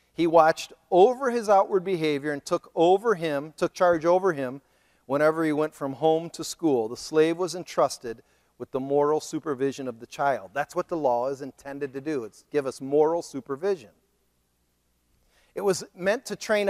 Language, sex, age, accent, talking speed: English, male, 40-59, American, 180 wpm